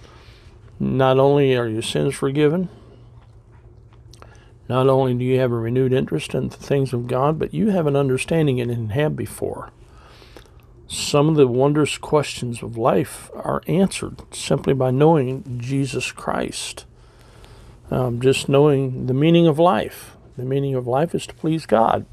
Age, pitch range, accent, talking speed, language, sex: 60-79, 125-155 Hz, American, 155 wpm, English, male